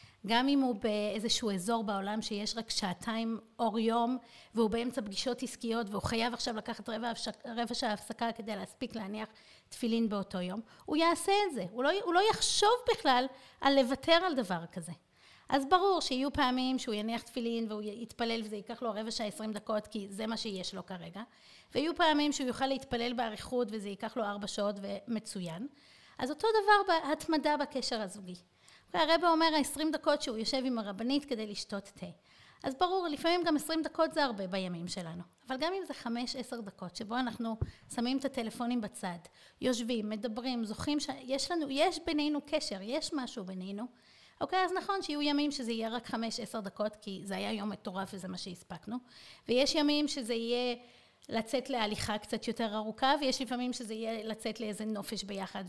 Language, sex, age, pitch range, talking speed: Hebrew, female, 30-49, 215-275 Hz, 175 wpm